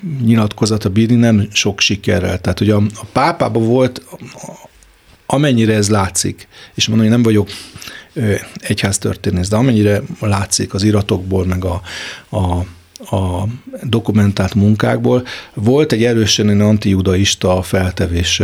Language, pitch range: Hungarian, 95-115 Hz